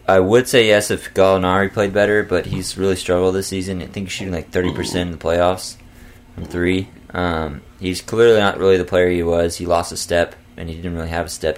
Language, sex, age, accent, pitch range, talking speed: English, male, 20-39, American, 85-105 Hz, 235 wpm